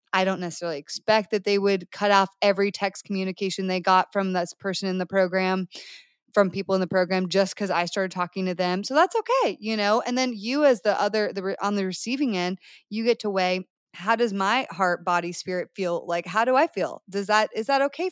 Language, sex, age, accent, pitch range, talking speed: English, female, 20-39, American, 180-225 Hz, 230 wpm